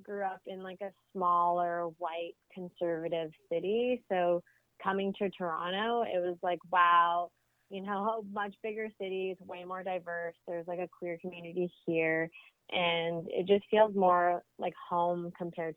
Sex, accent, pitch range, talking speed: female, American, 175-210 Hz, 155 wpm